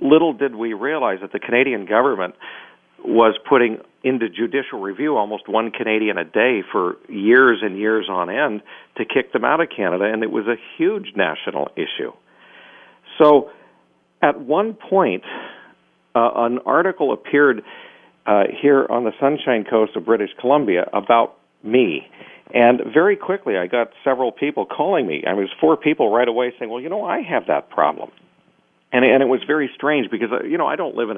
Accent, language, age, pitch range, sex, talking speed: American, English, 50-69, 110-145 Hz, male, 185 wpm